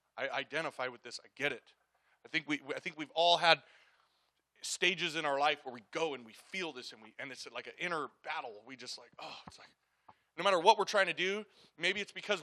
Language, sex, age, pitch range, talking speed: English, male, 20-39, 150-185 Hz, 240 wpm